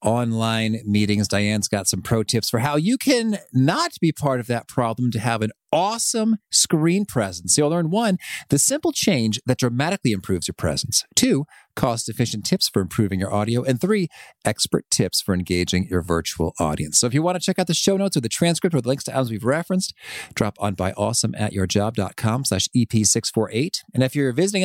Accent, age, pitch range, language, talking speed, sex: American, 40-59, 105-145 Hz, English, 195 wpm, male